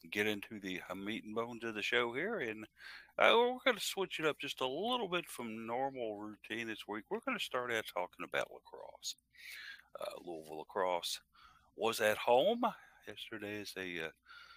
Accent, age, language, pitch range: American, 60-79, English, 95-145 Hz